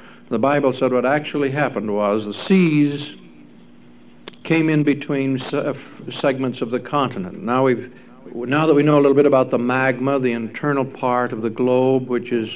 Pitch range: 120-145 Hz